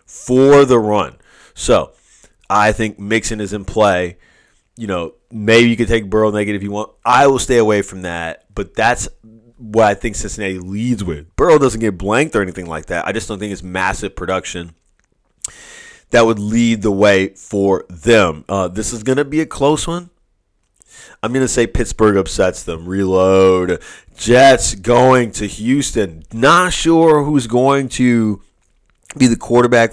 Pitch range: 95-125 Hz